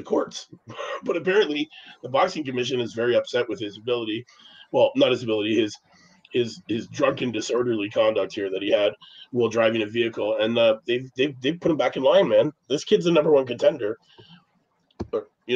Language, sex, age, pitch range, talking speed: English, male, 30-49, 115-175 Hz, 185 wpm